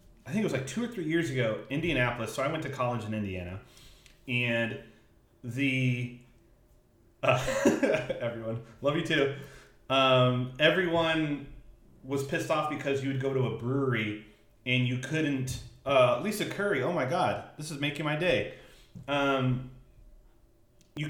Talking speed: 150 wpm